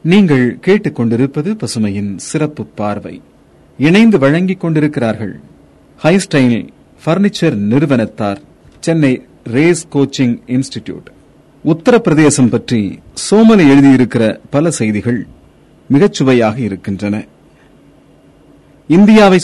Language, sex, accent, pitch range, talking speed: Tamil, male, native, 110-165 Hz, 70 wpm